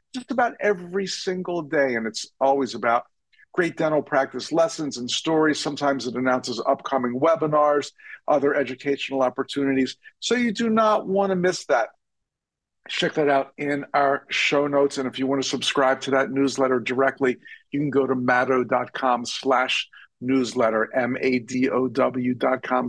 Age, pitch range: 50-69, 125-165 Hz